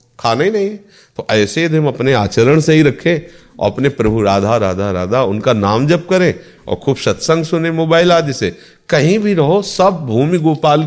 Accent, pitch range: native, 95-150 Hz